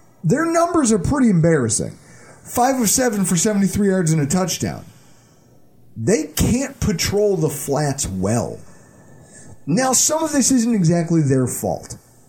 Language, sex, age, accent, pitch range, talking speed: English, male, 30-49, American, 130-210 Hz, 135 wpm